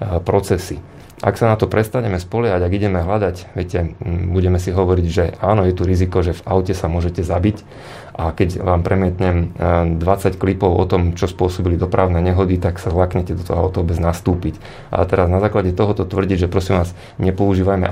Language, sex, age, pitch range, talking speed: Slovak, male, 30-49, 90-100 Hz, 190 wpm